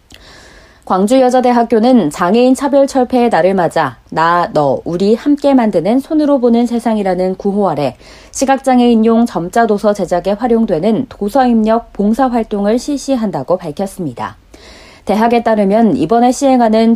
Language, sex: Korean, female